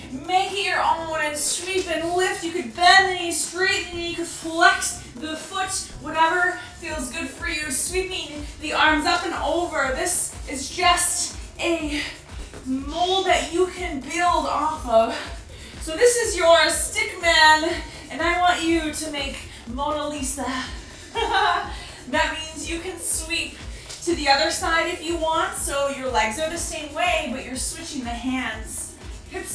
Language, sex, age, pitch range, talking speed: English, female, 20-39, 300-360 Hz, 160 wpm